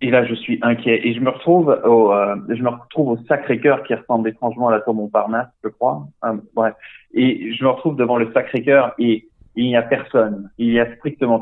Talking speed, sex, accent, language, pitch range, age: 240 wpm, male, French, French, 110-130 Hz, 20-39